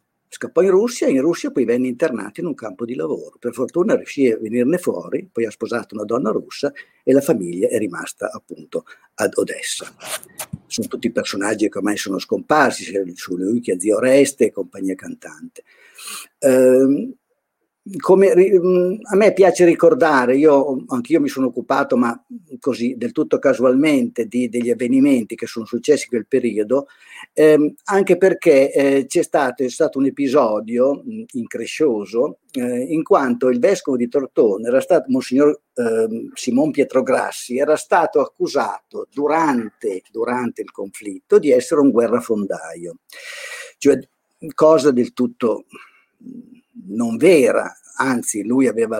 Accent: native